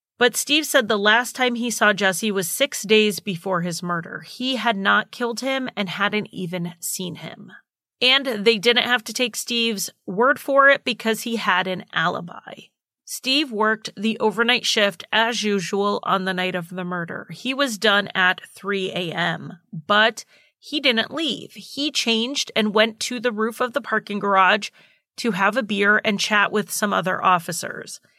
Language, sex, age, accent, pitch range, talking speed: English, female, 30-49, American, 195-240 Hz, 180 wpm